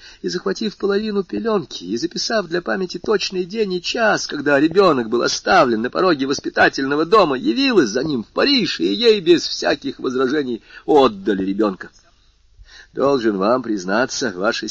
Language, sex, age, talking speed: Russian, male, 50-69, 145 wpm